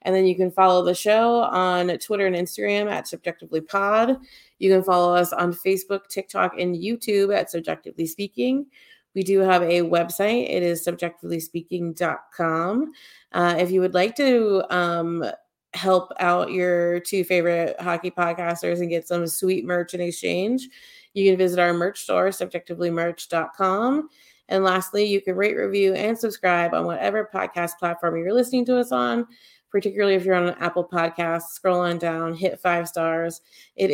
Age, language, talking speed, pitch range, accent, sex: 30-49, English, 160 wpm, 170-195 Hz, American, female